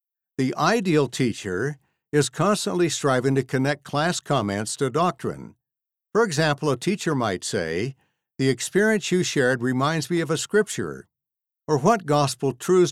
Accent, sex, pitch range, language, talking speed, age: American, male, 130-165 Hz, English, 145 wpm, 60-79